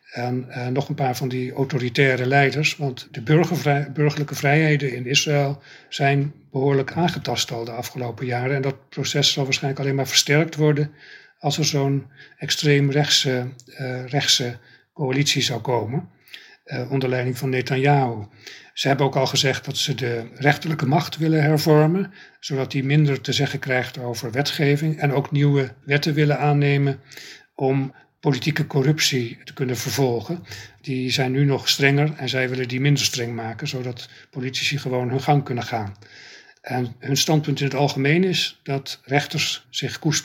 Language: Dutch